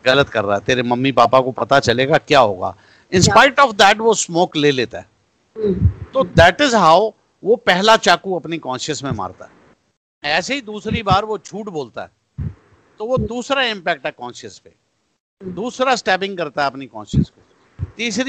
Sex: male